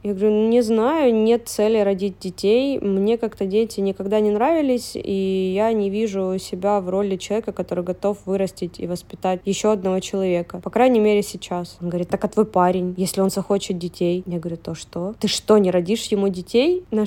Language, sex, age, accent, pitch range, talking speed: Russian, female, 20-39, native, 185-220 Hz, 195 wpm